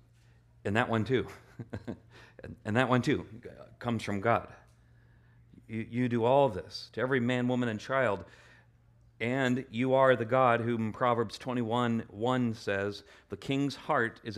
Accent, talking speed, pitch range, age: American, 155 wpm, 100-125 Hz, 40-59